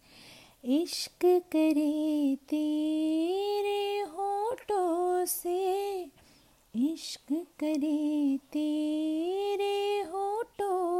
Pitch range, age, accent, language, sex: 315-400 Hz, 30-49, native, Hindi, female